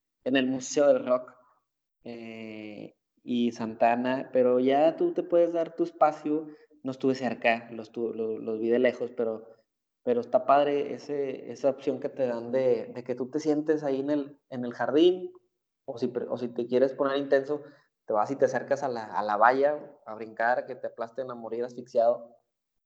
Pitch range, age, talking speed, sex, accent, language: 115-145 Hz, 20-39, 190 wpm, male, Mexican, Spanish